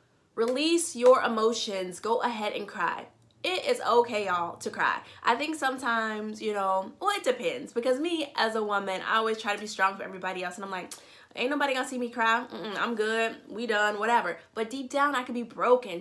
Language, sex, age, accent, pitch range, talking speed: English, female, 20-39, American, 205-255 Hz, 215 wpm